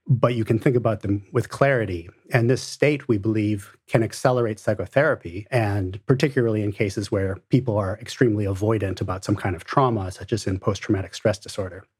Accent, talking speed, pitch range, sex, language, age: American, 180 wpm, 105-125 Hz, male, English, 40-59